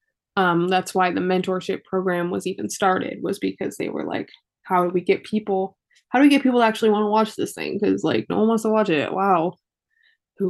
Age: 20-39